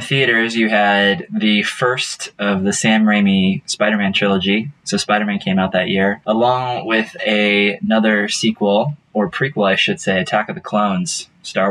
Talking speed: 160 wpm